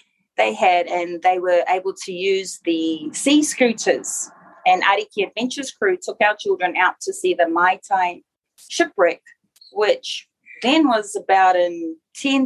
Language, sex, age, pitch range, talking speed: English, female, 30-49, 190-275 Hz, 150 wpm